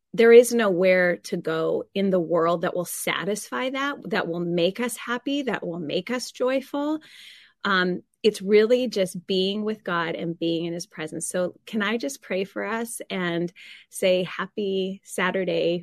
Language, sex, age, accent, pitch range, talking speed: English, female, 30-49, American, 175-210 Hz, 170 wpm